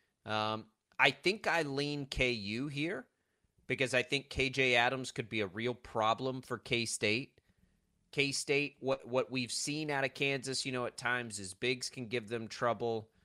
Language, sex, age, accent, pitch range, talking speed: English, male, 30-49, American, 110-135 Hz, 170 wpm